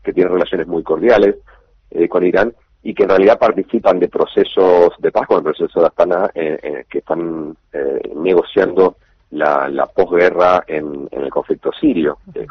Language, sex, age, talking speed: Spanish, male, 40-59, 175 wpm